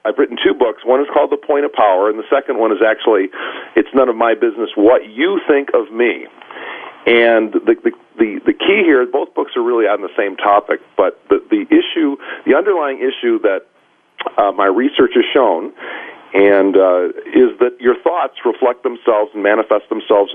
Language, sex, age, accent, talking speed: English, male, 40-59, American, 190 wpm